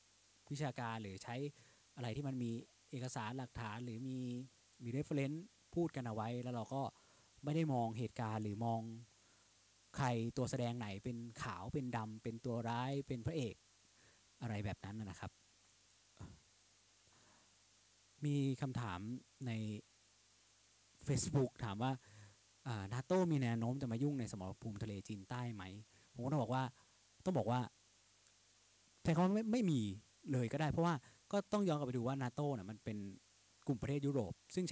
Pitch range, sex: 105-135 Hz, male